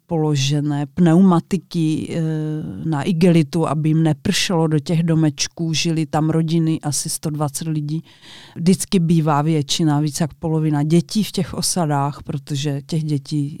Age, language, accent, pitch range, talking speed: 40-59, Czech, native, 155-180 Hz, 130 wpm